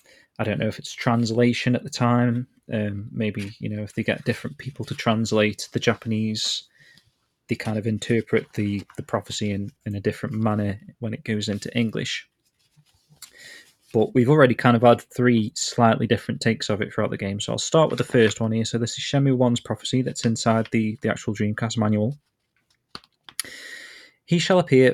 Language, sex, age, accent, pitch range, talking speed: English, male, 20-39, British, 110-130 Hz, 190 wpm